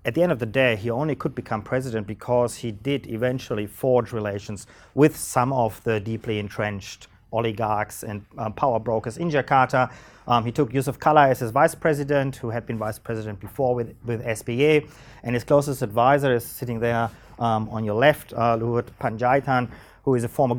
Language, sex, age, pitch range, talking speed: English, male, 30-49, 110-140 Hz, 190 wpm